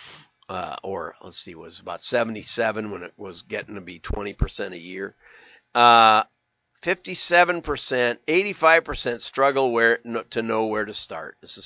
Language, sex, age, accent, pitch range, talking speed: English, male, 50-69, American, 115-150 Hz, 155 wpm